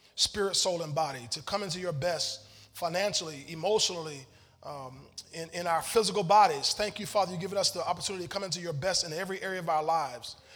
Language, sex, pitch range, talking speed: English, male, 170-230 Hz, 205 wpm